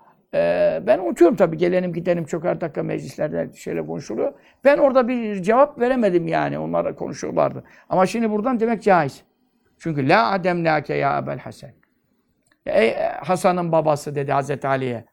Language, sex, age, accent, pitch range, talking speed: Turkish, male, 60-79, native, 170-225 Hz, 145 wpm